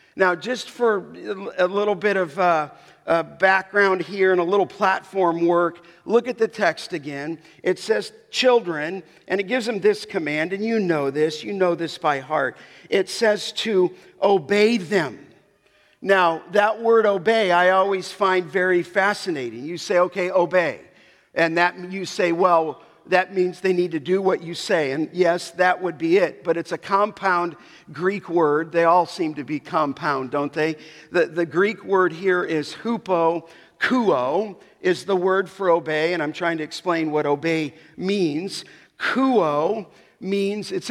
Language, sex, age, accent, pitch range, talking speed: English, male, 50-69, American, 170-205 Hz, 170 wpm